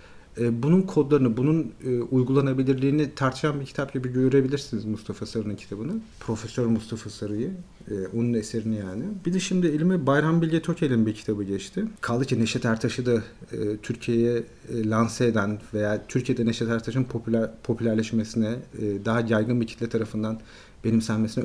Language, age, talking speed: Turkish, 40-59, 145 wpm